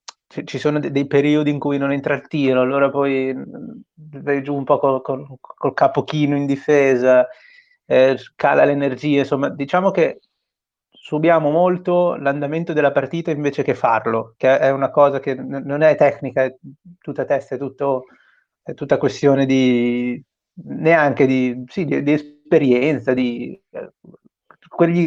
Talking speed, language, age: 150 wpm, Italian, 30-49